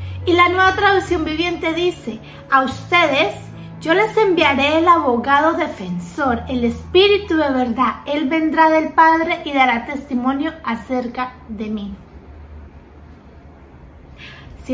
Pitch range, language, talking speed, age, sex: 235-315 Hz, Spanish, 120 wpm, 30-49, female